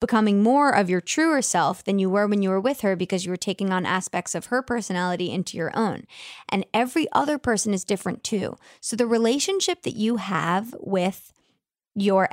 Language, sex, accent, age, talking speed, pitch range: English, female, American, 20-39, 200 wpm, 180-225 Hz